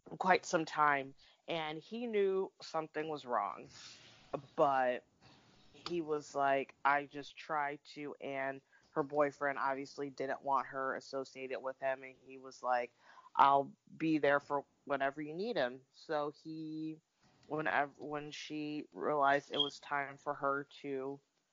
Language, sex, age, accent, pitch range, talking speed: English, female, 20-39, American, 130-145 Hz, 140 wpm